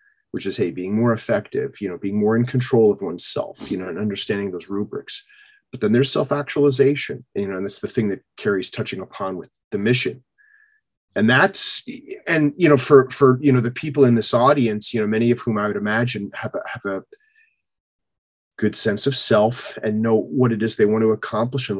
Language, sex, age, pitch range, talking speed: English, male, 30-49, 105-140 Hz, 210 wpm